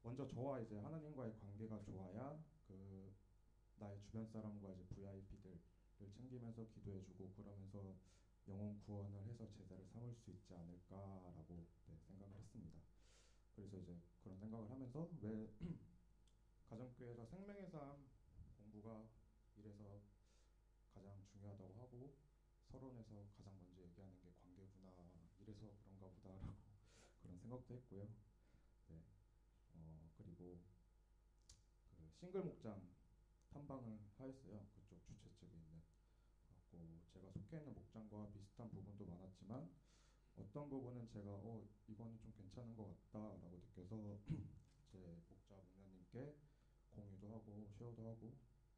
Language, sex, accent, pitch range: Korean, male, native, 95-115 Hz